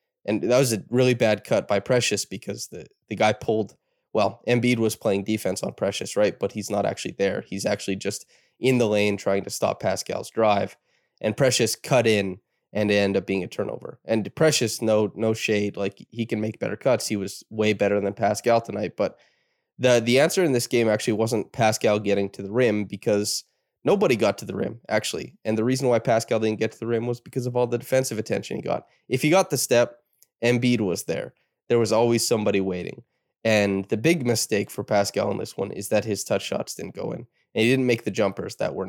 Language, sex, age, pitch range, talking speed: English, male, 20-39, 105-125 Hz, 220 wpm